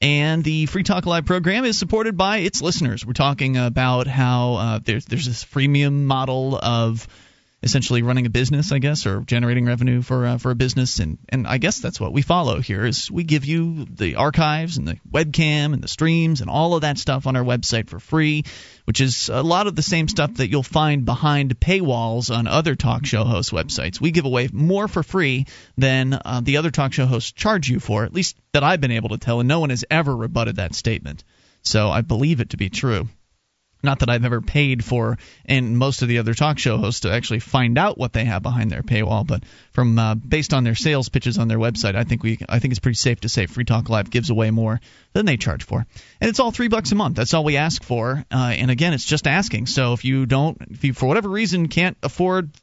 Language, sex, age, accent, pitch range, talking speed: English, male, 30-49, American, 115-150 Hz, 240 wpm